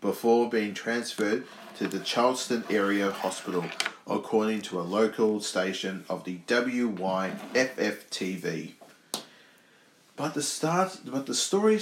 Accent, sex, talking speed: Australian, male, 115 wpm